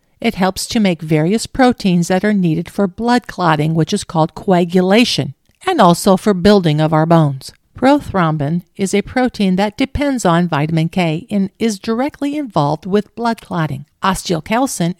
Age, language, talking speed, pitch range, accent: 50-69, English, 160 wpm, 165-225 Hz, American